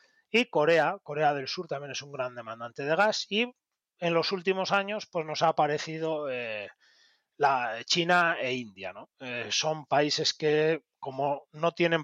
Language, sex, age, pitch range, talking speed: Spanish, male, 30-49, 135-165 Hz, 170 wpm